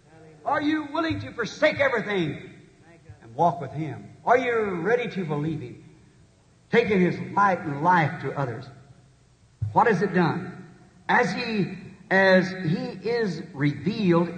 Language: English